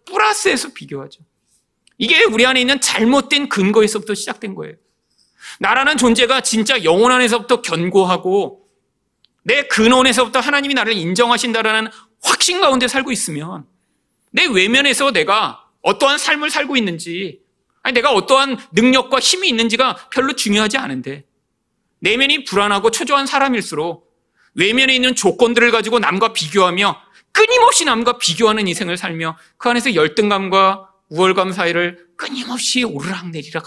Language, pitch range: Korean, 185-260 Hz